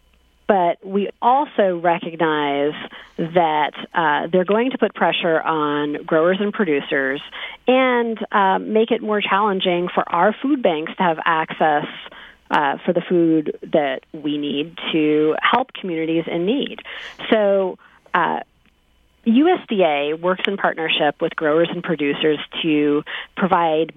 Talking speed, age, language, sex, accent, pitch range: 130 wpm, 40-59, English, female, American, 165-215 Hz